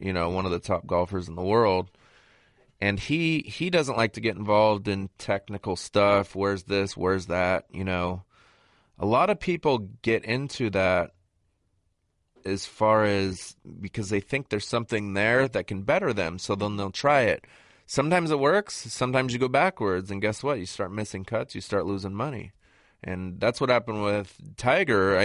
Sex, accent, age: male, American, 30-49